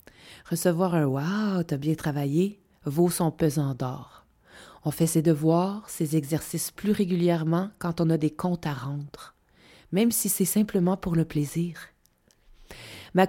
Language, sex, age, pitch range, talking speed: French, female, 30-49, 160-205 Hz, 160 wpm